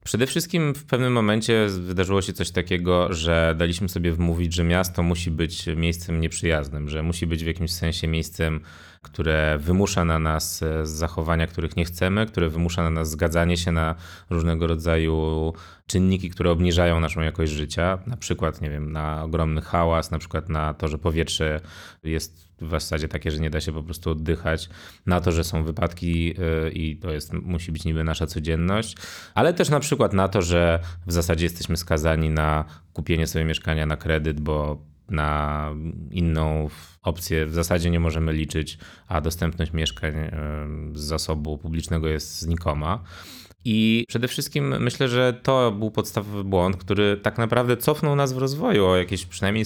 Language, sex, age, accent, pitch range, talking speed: Polish, male, 20-39, native, 80-95 Hz, 170 wpm